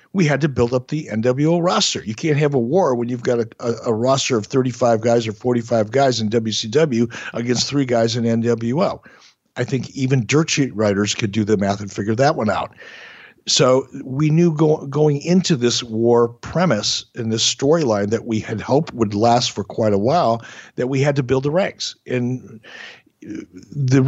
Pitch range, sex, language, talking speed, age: 115-135 Hz, male, English, 195 wpm, 50-69